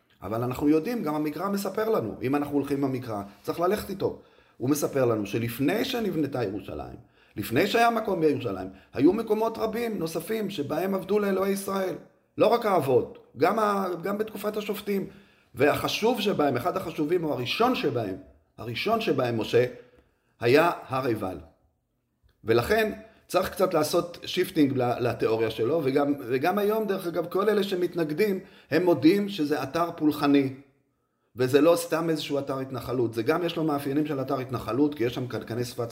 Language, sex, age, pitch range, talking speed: Hebrew, male, 30-49, 125-185 Hz, 155 wpm